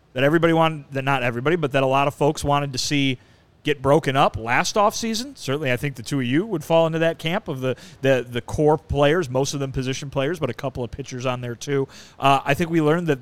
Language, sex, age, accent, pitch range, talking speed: English, male, 30-49, American, 125-155 Hz, 260 wpm